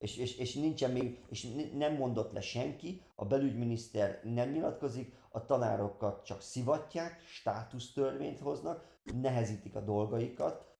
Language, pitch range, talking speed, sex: Hungarian, 100-125 Hz, 130 wpm, male